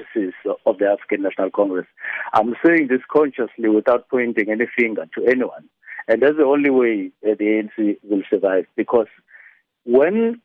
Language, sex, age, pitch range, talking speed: English, male, 50-69, 115-150 Hz, 150 wpm